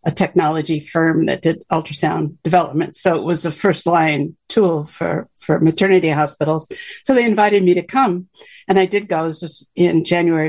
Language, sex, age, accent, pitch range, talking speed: English, female, 50-69, American, 160-190 Hz, 185 wpm